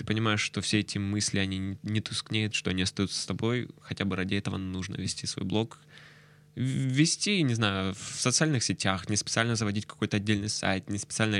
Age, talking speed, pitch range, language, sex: 20-39, 190 wpm, 100-135 Hz, Russian, male